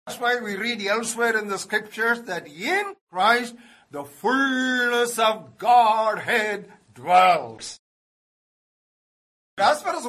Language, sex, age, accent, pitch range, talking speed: English, male, 50-69, Indian, 200-245 Hz, 115 wpm